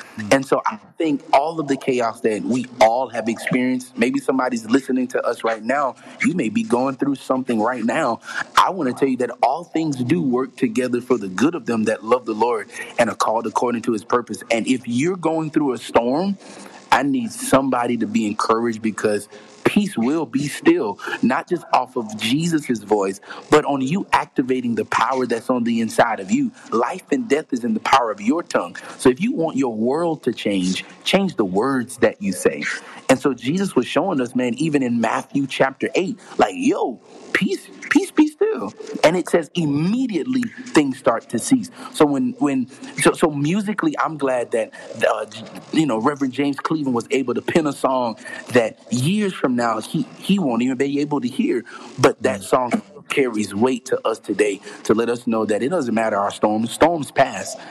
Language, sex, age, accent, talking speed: English, male, 30-49, American, 205 wpm